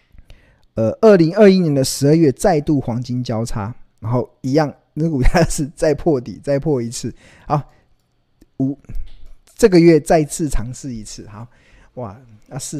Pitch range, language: 105-145 Hz, Chinese